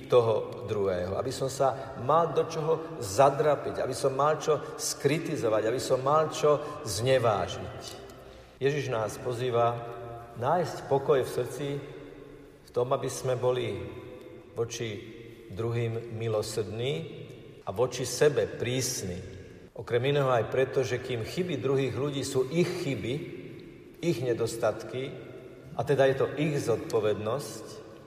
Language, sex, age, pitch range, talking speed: Slovak, male, 50-69, 115-145 Hz, 125 wpm